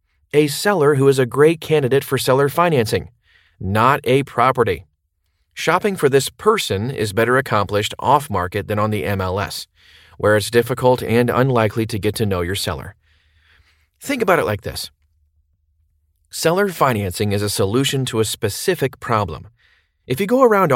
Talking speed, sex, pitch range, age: 155 wpm, male, 95-140 Hz, 30-49